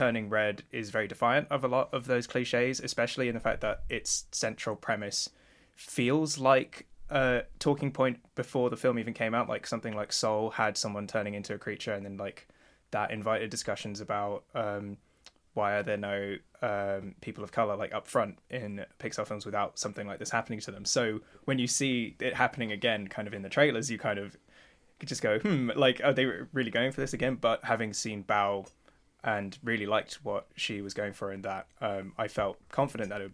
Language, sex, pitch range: English, male, 100-120 Hz